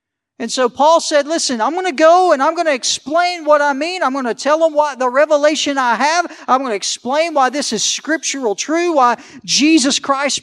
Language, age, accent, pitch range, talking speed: English, 50-69, American, 195-290 Hz, 225 wpm